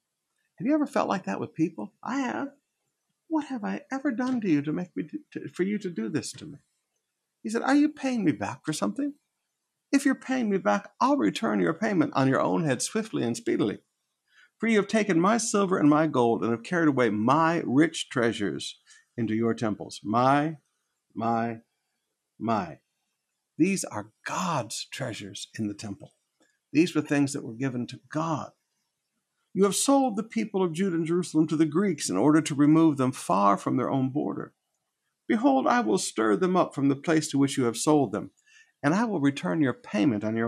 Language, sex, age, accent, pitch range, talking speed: English, male, 60-79, American, 130-205 Hz, 200 wpm